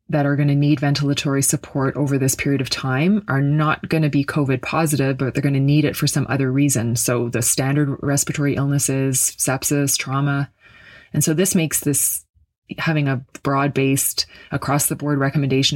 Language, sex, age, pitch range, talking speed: English, female, 20-39, 130-150 Hz, 185 wpm